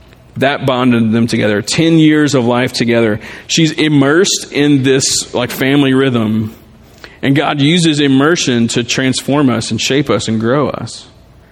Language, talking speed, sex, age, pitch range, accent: English, 150 wpm, male, 40-59, 120-140 Hz, American